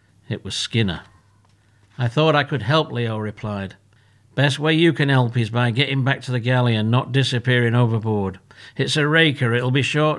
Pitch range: 105-130 Hz